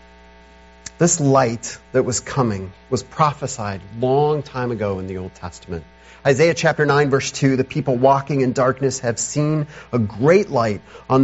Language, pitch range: English, 100-160 Hz